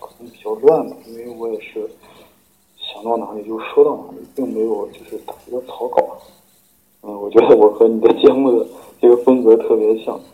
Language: Chinese